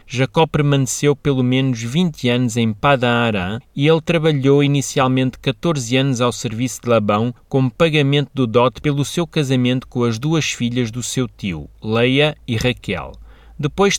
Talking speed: 160 wpm